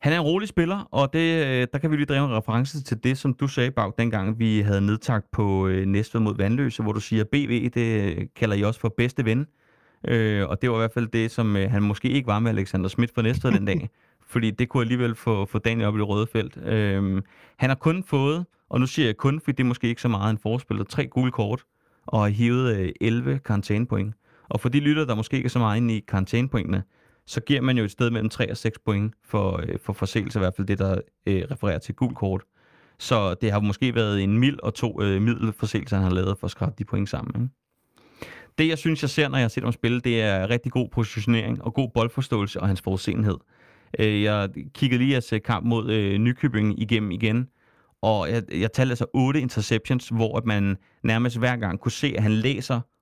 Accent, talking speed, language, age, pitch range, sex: native, 240 wpm, Danish, 30-49, 105-125 Hz, male